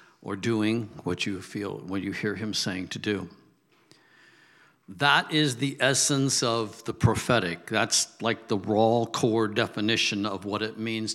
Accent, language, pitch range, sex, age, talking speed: American, English, 110-140 Hz, male, 60-79, 155 wpm